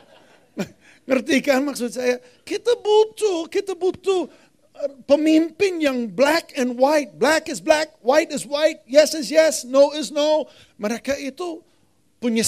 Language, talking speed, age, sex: Indonesian, 135 wpm, 50-69, male